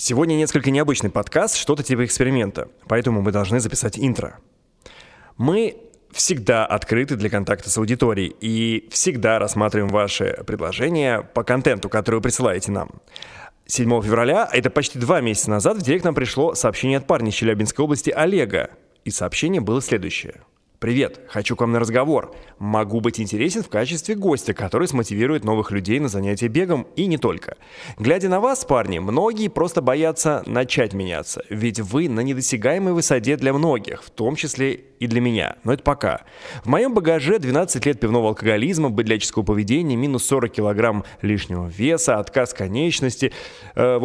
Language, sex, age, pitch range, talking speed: Russian, male, 20-39, 105-145 Hz, 160 wpm